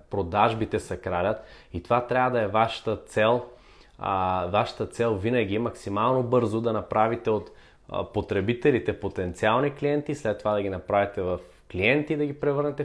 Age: 20-39